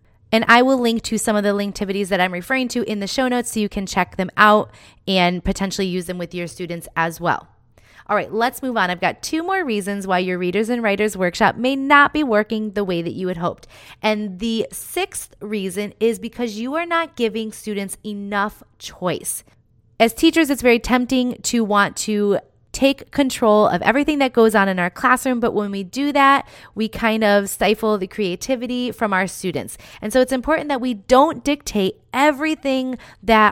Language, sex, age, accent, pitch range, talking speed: English, female, 20-39, American, 195-245 Hz, 200 wpm